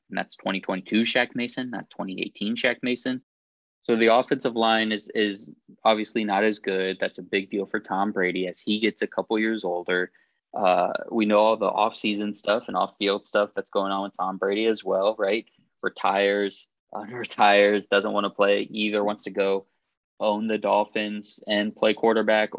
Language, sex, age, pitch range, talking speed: English, male, 20-39, 100-110 Hz, 190 wpm